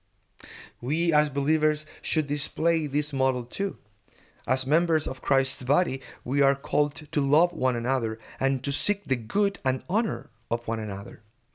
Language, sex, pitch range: English, male, 130-160 Hz